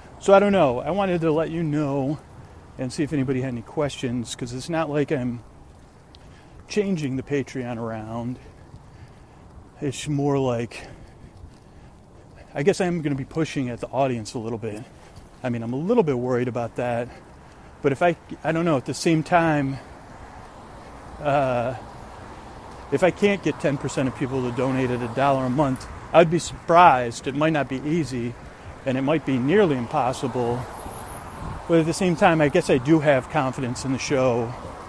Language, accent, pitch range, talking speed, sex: English, American, 115-155 Hz, 175 wpm, male